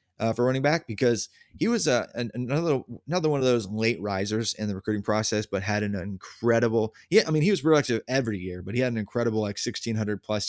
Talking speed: 230 wpm